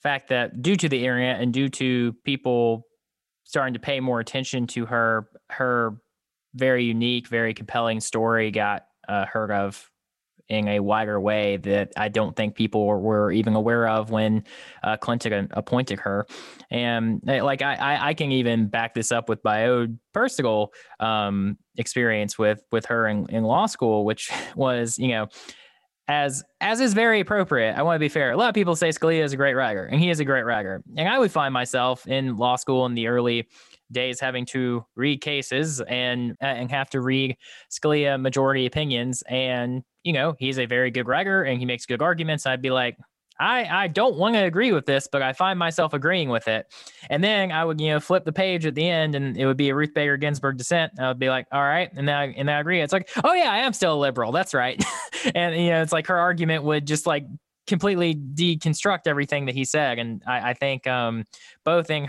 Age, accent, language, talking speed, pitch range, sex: 20-39, American, English, 215 wpm, 115-150 Hz, male